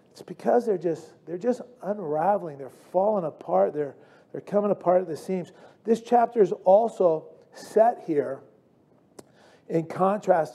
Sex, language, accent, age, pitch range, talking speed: male, English, American, 40-59, 150-190 Hz, 140 wpm